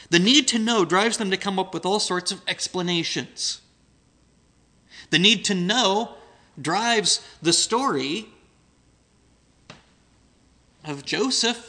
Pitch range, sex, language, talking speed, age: 160-215 Hz, male, English, 120 wpm, 30-49